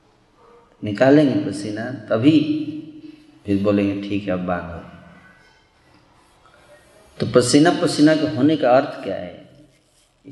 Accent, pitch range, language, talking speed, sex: native, 100-135 Hz, Hindi, 105 wpm, male